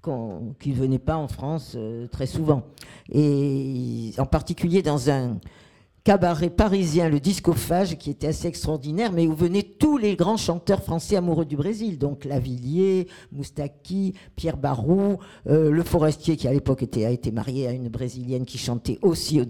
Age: 50-69